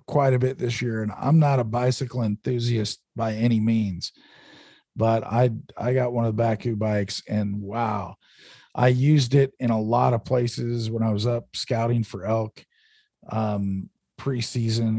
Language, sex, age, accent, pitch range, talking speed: English, male, 40-59, American, 105-125 Hz, 170 wpm